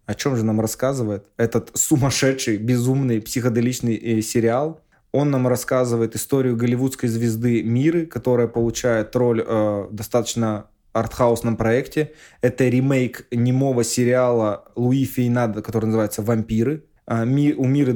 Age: 20-39